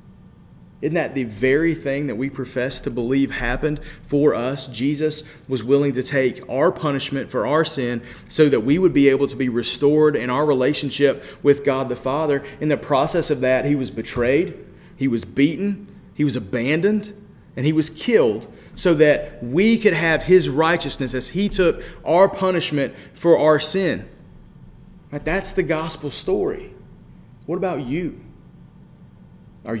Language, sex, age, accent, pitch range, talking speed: English, male, 30-49, American, 130-165 Hz, 160 wpm